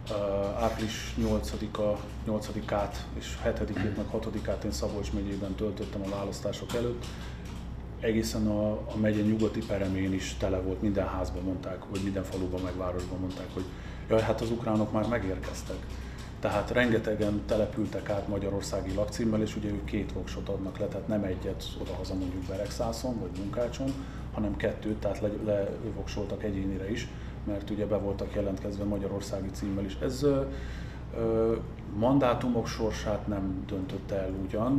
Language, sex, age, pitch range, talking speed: Hungarian, male, 30-49, 95-110 Hz, 140 wpm